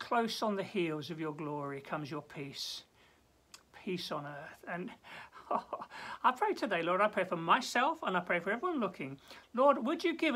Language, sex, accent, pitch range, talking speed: English, male, British, 145-240 Hz, 185 wpm